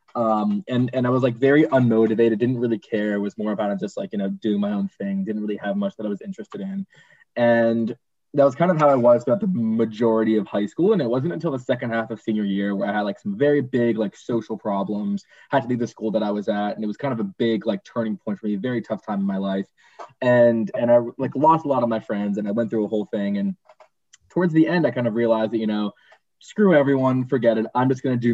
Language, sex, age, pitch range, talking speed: English, male, 20-39, 105-130 Hz, 275 wpm